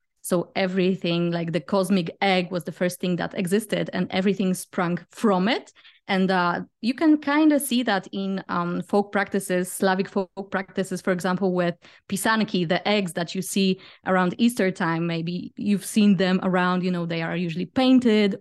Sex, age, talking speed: female, 20-39, 180 wpm